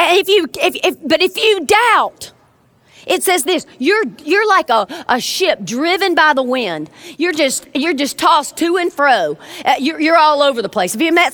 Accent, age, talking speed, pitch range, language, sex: American, 40-59, 200 wpm, 280-380 Hz, English, female